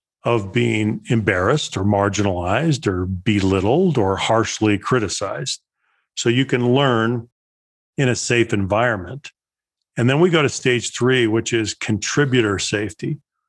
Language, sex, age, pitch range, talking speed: English, male, 40-59, 105-125 Hz, 130 wpm